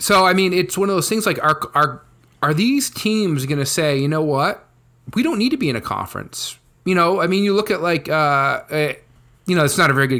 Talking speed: 265 wpm